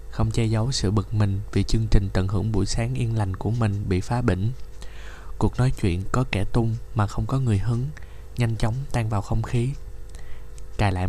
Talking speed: 210 wpm